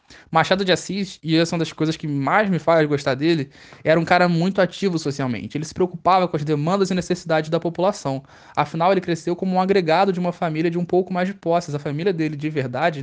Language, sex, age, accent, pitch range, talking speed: Portuguese, male, 20-39, Brazilian, 150-190 Hz, 235 wpm